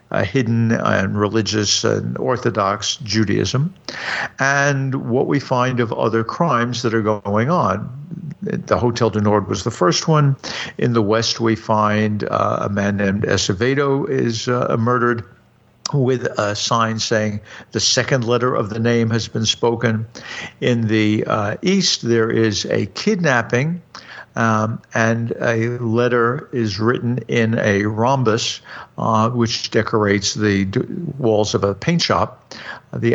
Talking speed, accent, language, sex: 145 wpm, American, English, male